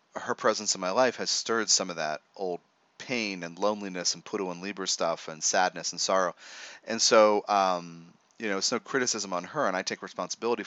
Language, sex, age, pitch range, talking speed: English, male, 30-49, 95-120 Hz, 210 wpm